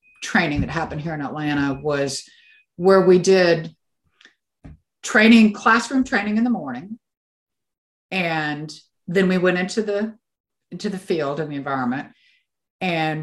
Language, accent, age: English, American, 50-69